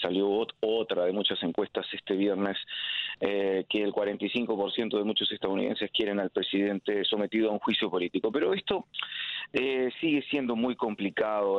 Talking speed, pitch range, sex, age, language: 150 wpm, 115-140 Hz, male, 30-49, Spanish